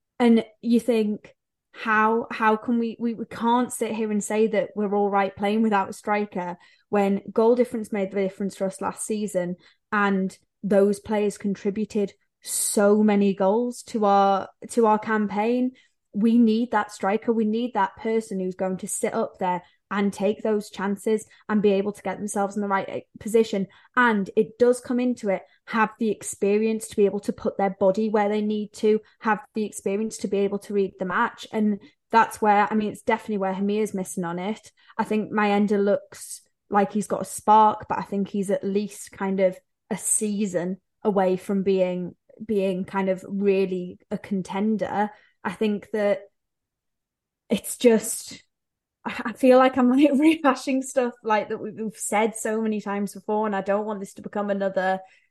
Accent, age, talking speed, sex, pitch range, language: British, 10-29, 185 wpm, female, 195-225 Hz, English